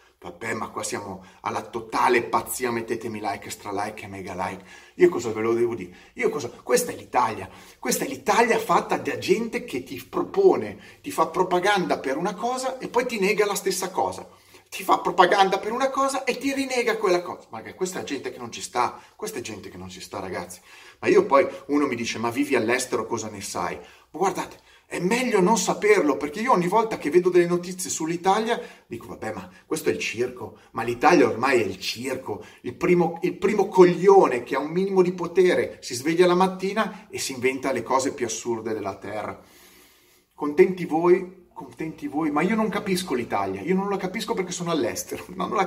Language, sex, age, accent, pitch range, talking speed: Italian, male, 30-49, native, 125-210 Hz, 205 wpm